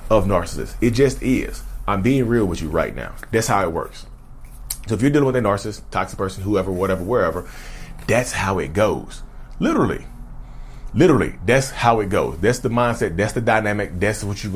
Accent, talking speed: American, 190 wpm